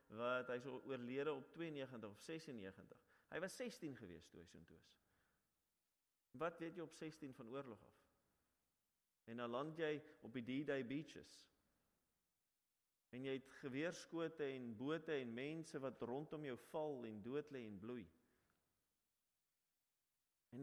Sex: male